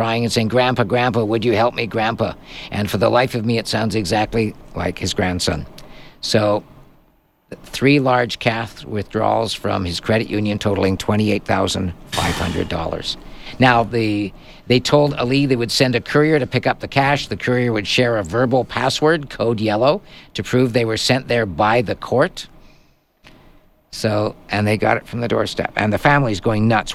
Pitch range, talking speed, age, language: 105-120 Hz, 175 wpm, 50-69, English